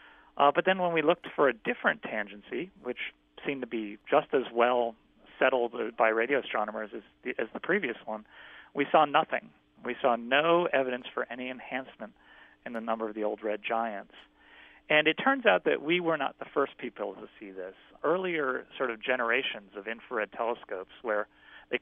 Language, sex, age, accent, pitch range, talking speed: English, male, 40-59, American, 110-150 Hz, 185 wpm